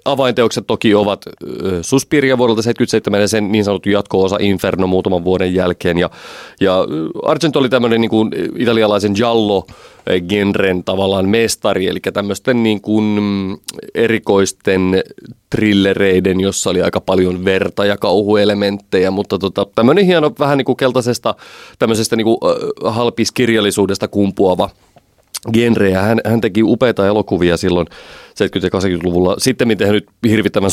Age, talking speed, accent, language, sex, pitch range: 30-49, 110 wpm, native, Finnish, male, 95-115 Hz